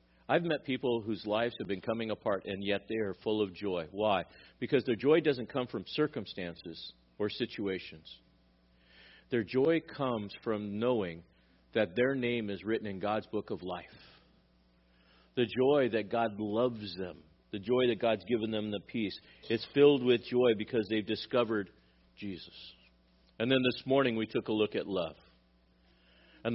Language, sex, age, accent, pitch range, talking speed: English, male, 50-69, American, 85-125 Hz, 165 wpm